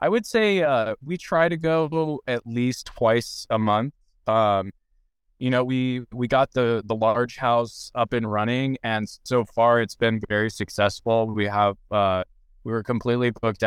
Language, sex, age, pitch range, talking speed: English, male, 20-39, 105-125 Hz, 175 wpm